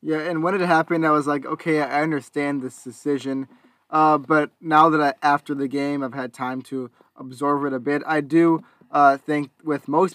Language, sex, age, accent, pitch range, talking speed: English, male, 20-39, American, 130-150 Hz, 205 wpm